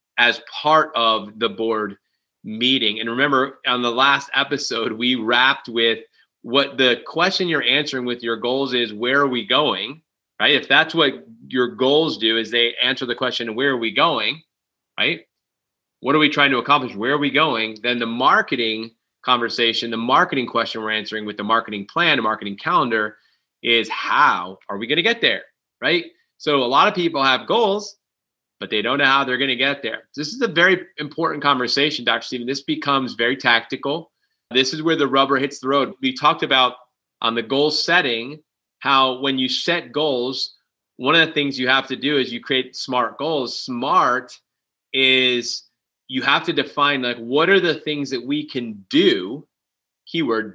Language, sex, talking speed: English, male, 185 wpm